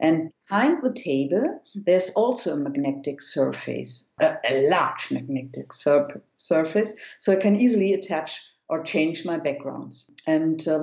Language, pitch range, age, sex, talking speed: English, 155-185 Hz, 50-69, female, 140 wpm